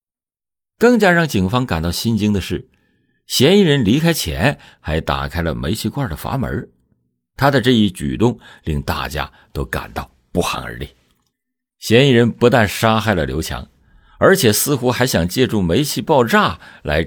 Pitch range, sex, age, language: 75-120 Hz, male, 50-69, Chinese